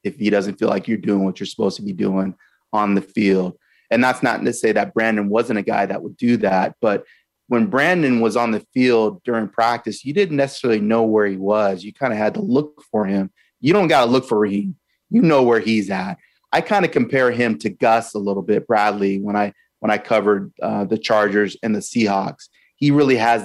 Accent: American